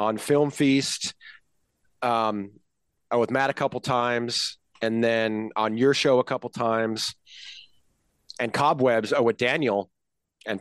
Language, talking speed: English, 130 wpm